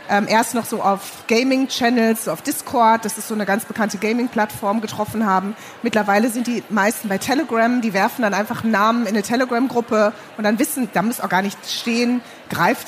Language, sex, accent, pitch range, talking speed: German, female, German, 210-250 Hz, 185 wpm